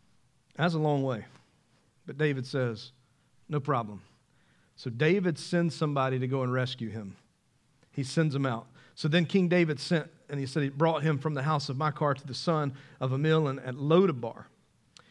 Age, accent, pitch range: 40-59, American, 140-200 Hz